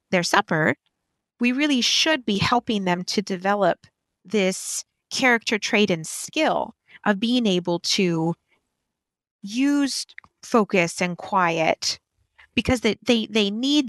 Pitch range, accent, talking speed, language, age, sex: 180-235 Hz, American, 120 wpm, English, 30-49, female